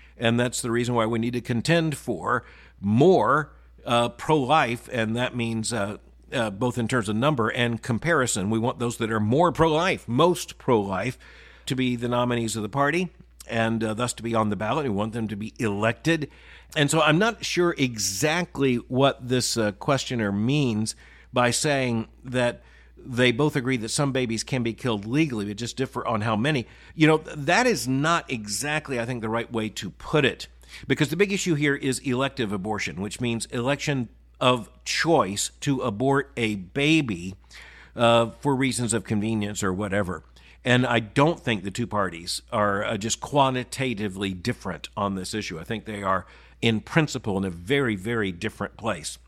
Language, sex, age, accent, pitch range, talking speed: English, male, 50-69, American, 110-140 Hz, 185 wpm